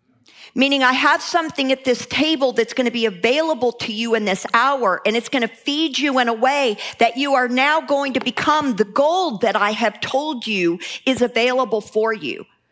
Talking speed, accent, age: 200 wpm, American, 50-69